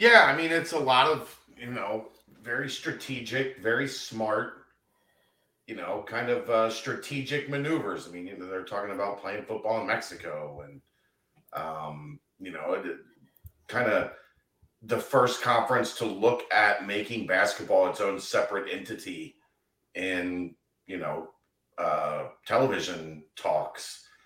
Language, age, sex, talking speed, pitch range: English, 40-59, male, 135 wpm, 95-140 Hz